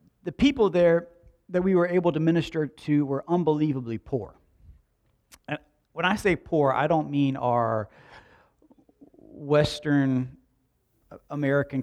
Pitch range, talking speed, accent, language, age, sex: 115-150 Hz, 120 wpm, American, English, 40-59, male